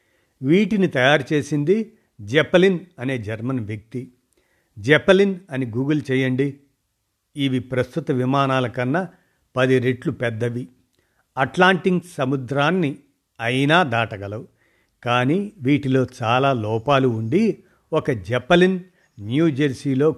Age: 50-69